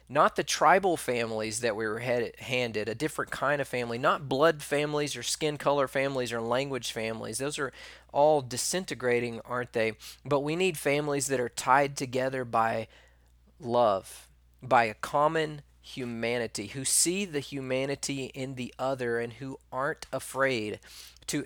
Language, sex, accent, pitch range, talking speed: English, male, American, 120-145 Hz, 155 wpm